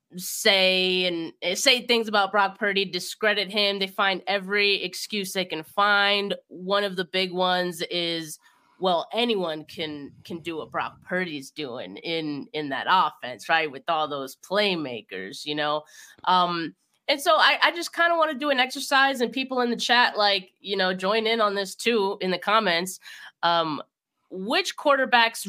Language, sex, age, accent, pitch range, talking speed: English, female, 20-39, American, 170-210 Hz, 175 wpm